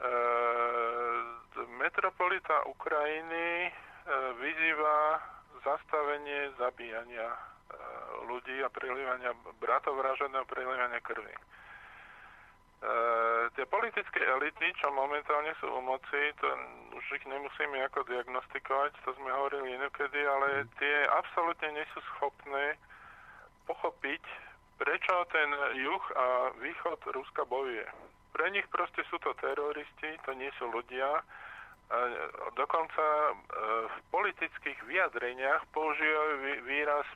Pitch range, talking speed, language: 125-150 Hz, 95 wpm, Slovak